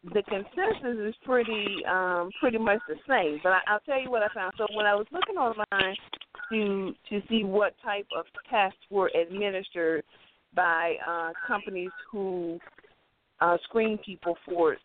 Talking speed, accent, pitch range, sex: 160 wpm, American, 170-205 Hz, female